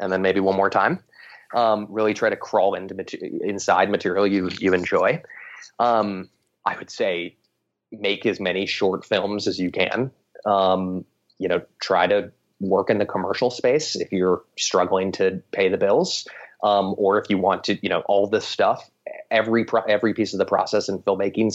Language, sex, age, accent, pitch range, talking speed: English, male, 30-49, American, 95-115 Hz, 185 wpm